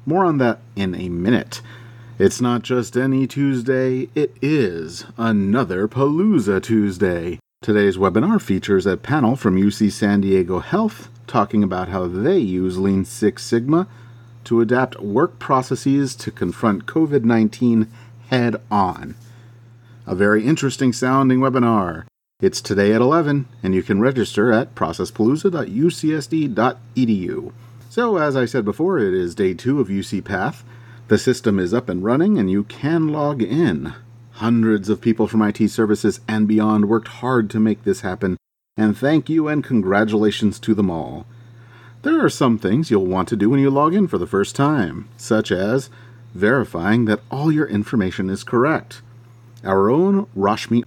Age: 40-59